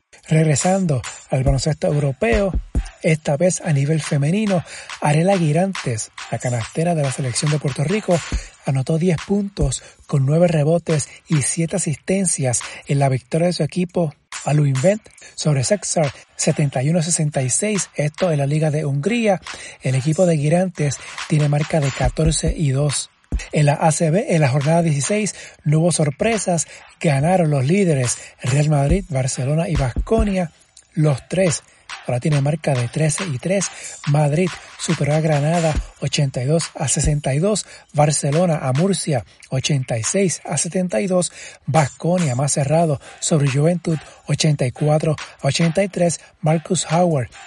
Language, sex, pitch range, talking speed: Spanish, male, 145-175 Hz, 135 wpm